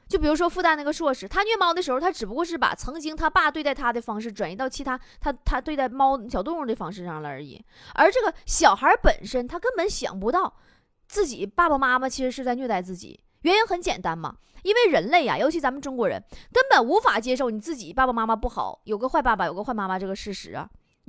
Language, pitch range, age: Chinese, 220-345 Hz, 20-39